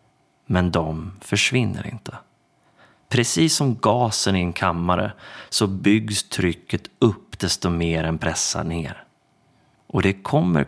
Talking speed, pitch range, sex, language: 125 wpm, 95-115 Hz, male, Swedish